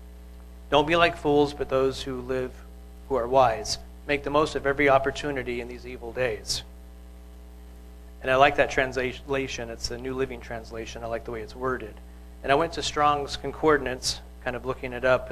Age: 40-59